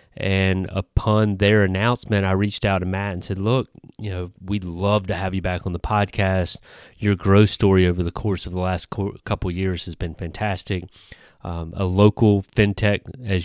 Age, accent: 30-49, American